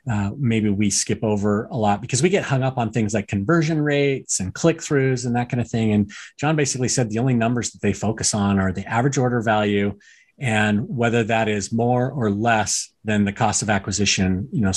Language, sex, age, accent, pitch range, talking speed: English, male, 30-49, American, 105-135 Hz, 220 wpm